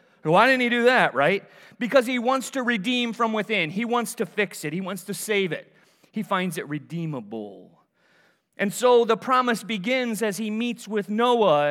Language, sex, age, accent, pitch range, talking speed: English, male, 40-59, American, 145-190 Hz, 190 wpm